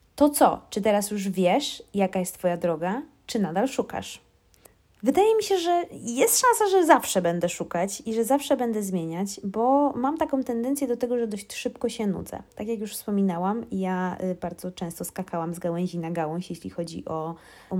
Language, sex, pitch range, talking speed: Polish, female, 185-240 Hz, 185 wpm